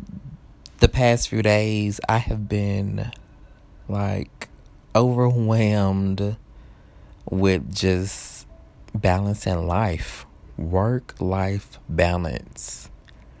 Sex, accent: male, American